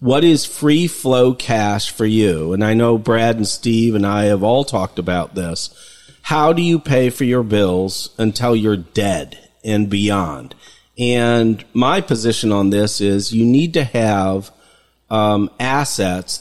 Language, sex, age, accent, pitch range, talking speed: English, male, 40-59, American, 100-125 Hz, 160 wpm